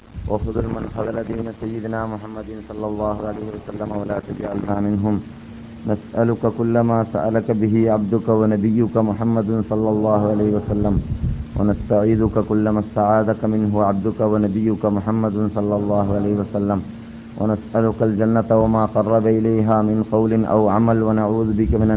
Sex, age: male, 30-49